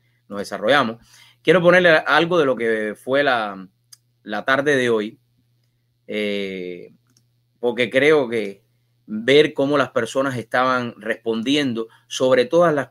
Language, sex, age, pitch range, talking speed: English, male, 30-49, 115-140 Hz, 125 wpm